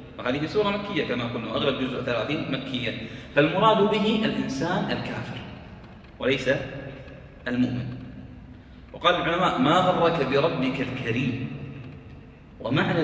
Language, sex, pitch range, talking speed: Arabic, male, 130-180 Hz, 100 wpm